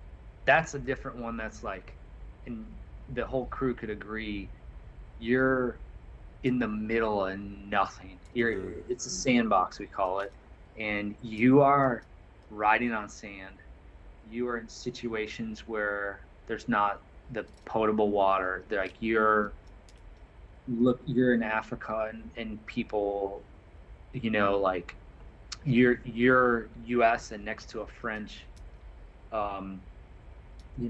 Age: 30-49